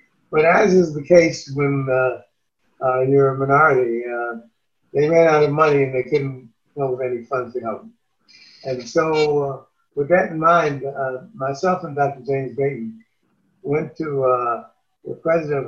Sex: male